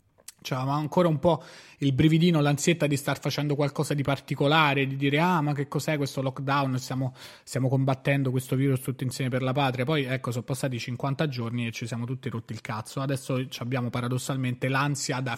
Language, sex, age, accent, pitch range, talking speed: Italian, male, 20-39, native, 125-145 Hz, 190 wpm